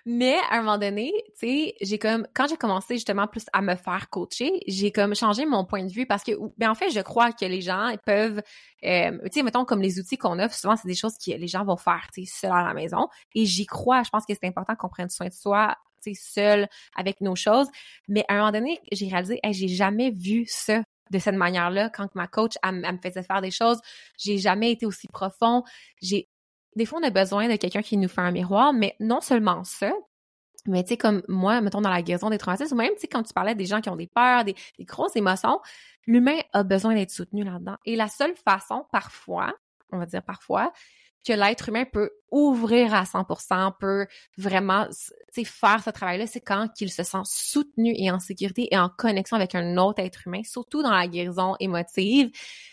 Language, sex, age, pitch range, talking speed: French, female, 20-39, 190-235 Hz, 230 wpm